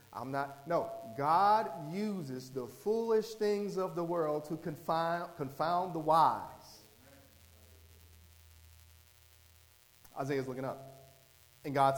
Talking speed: 110 wpm